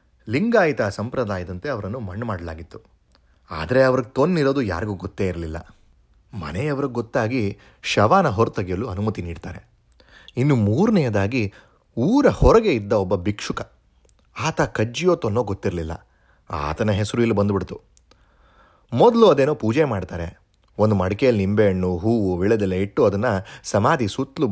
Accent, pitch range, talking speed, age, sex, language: native, 90-115 Hz, 110 wpm, 30-49, male, Kannada